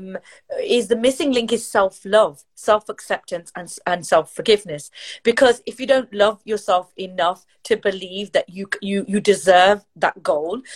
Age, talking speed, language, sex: 30-49, 145 wpm, English, female